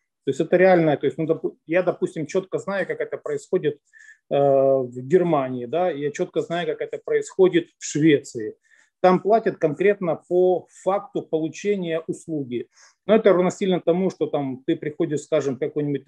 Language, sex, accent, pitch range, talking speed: Ukrainian, male, native, 150-195 Hz, 170 wpm